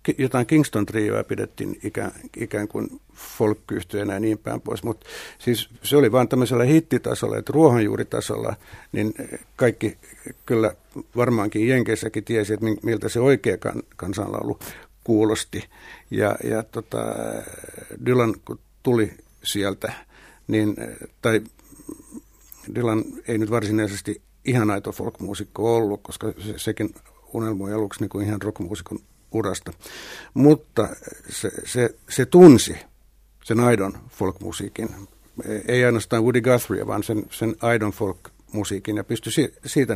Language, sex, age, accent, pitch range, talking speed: Finnish, male, 60-79, native, 105-125 Hz, 115 wpm